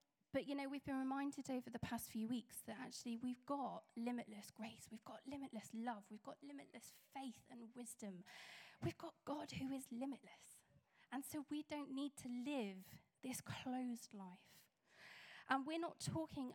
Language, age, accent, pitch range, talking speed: English, 10-29, British, 205-255 Hz, 170 wpm